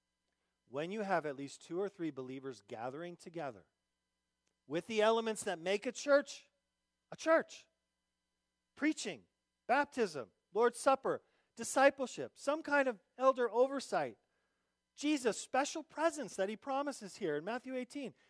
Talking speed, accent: 130 wpm, American